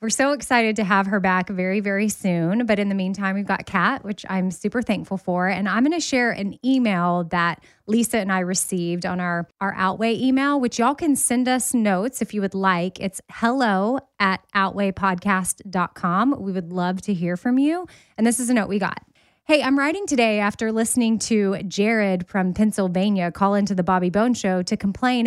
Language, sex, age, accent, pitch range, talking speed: English, female, 20-39, American, 190-235 Hz, 200 wpm